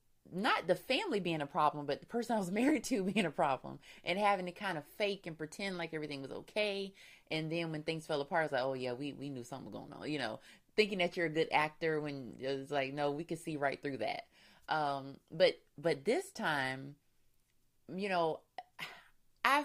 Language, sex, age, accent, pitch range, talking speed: English, female, 20-39, American, 145-200 Hz, 225 wpm